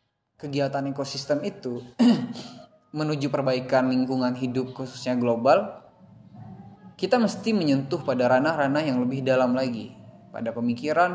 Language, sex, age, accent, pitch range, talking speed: Indonesian, male, 10-29, native, 125-155 Hz, 110 wpm